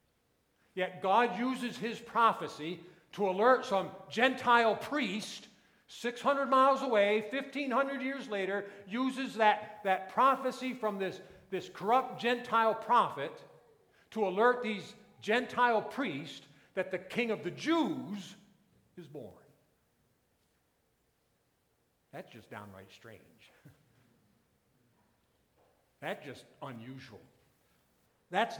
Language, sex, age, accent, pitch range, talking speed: English, male, 50-69, American, 140-225 Hz, 100 wpm